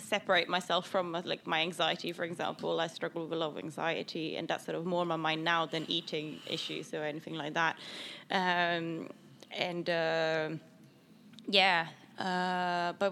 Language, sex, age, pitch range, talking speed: English, female, 20-39, 175-210 Hz, 170 wpm